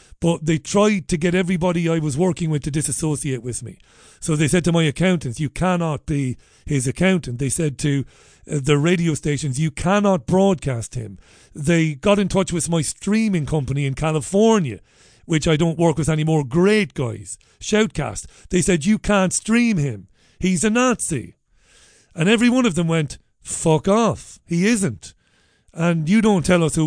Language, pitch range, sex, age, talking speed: English, 140-180 Hz, male, 40-59, 175 wpm